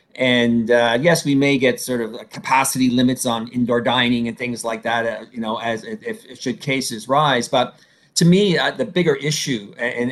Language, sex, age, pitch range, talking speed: English, male, 40-59, 120-155 Hz, 200 wpm